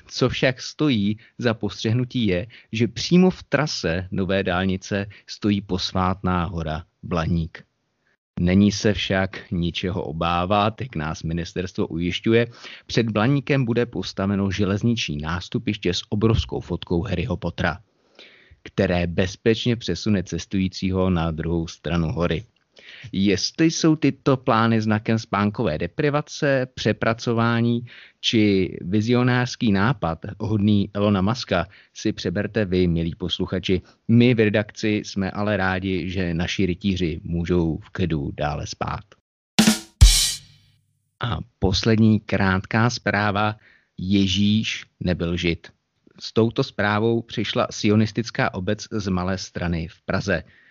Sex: male